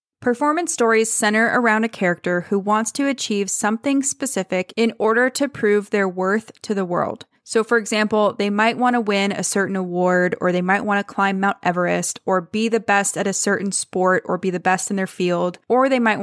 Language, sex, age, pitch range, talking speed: English, female, 20-39, 190-235 Hz, 215 wpm